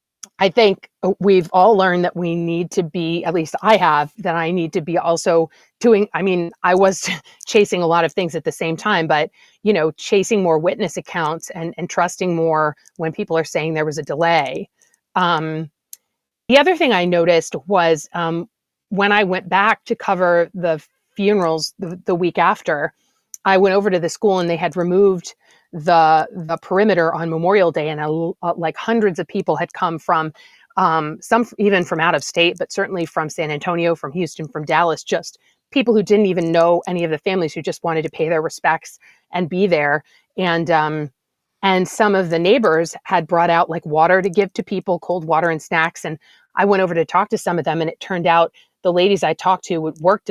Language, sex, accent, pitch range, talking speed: English, female, American, 165-195 Hz, 210 wpm